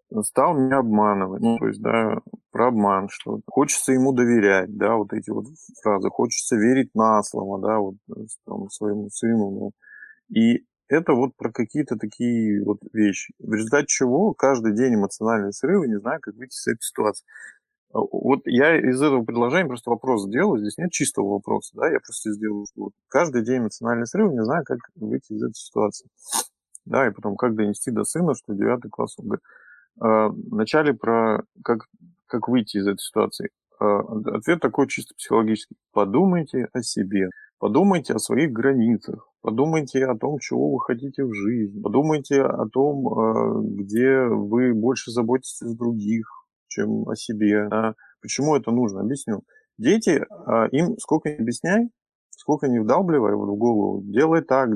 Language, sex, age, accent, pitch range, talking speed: Russian, male, 20-39, native, 105-135 Hz, 160 wpm